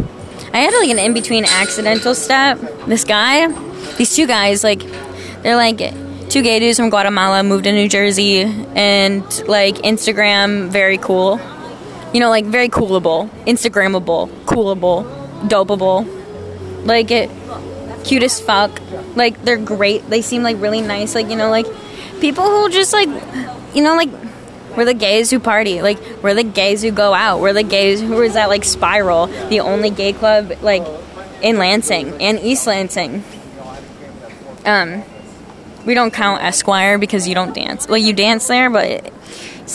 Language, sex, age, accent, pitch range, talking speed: English, female, 10-29, American, 195-235 Hz, 160 wpm